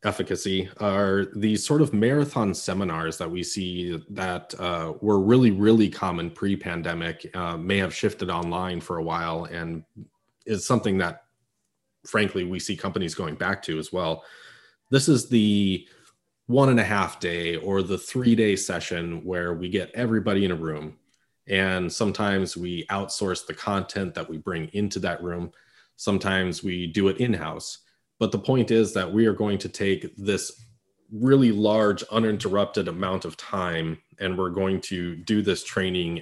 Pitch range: 90-115 Hz